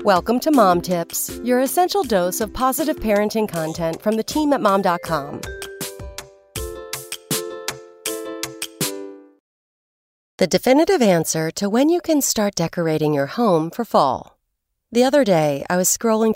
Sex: female